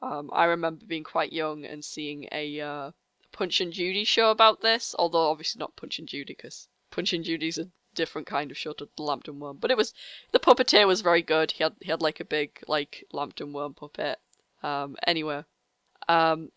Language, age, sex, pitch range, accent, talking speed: English, 10-29, female, 150-195 Hz, British, 205 wpm